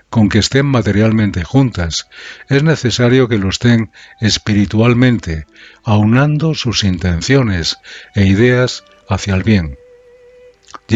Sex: male